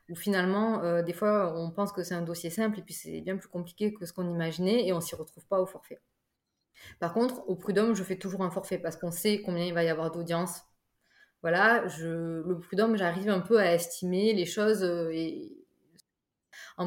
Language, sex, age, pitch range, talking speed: French, female, 20-39, 170-195 Hz, 220 wpm